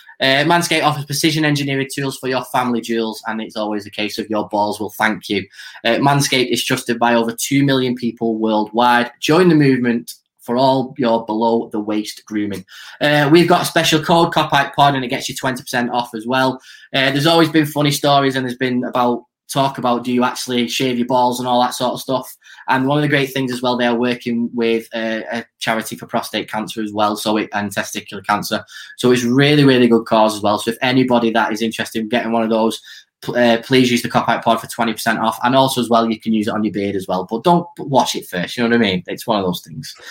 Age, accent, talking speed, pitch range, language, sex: 10-29, British, 240 wpm, 115-135 Hz, English, male